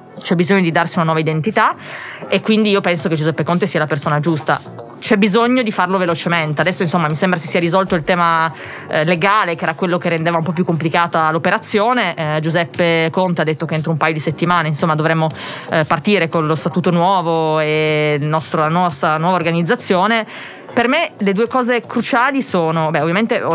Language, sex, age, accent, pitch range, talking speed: Italian, female, 20-39, native, 160-190 Hz, 205 wpm